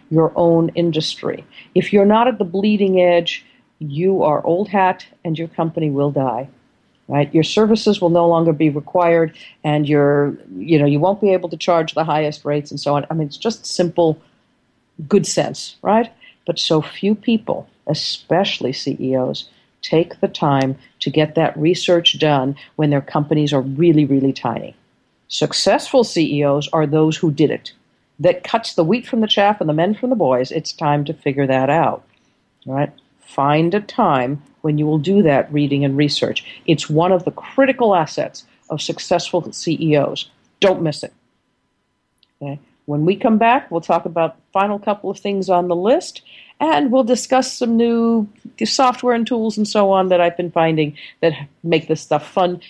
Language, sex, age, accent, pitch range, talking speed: English, female, 50-69, American, 150-200 Hz, 180 wpm